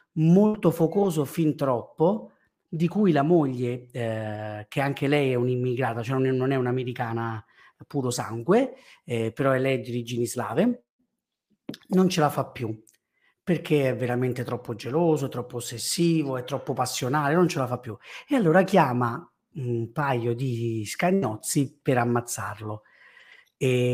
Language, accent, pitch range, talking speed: Italian, native, 125-155 Hz, 150 wpm